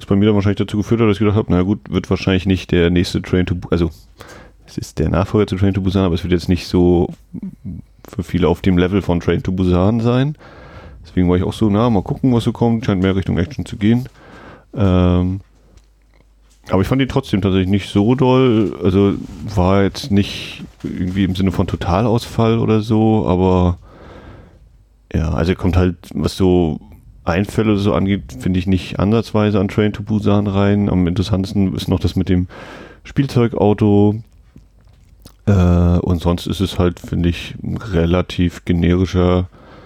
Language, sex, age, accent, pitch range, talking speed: German, male, 30-49, German, 90-105 Hz, 180 wpm